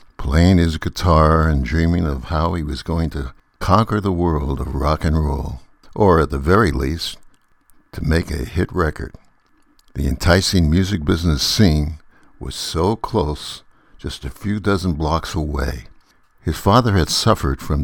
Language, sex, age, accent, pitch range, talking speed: English, male, 60-79, American, 75-85 Hz, 160 wpm